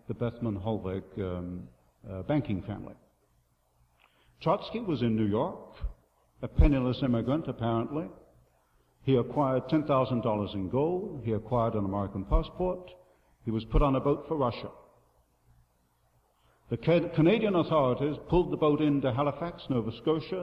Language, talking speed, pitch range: English, 125 wpm, 95-145 Hz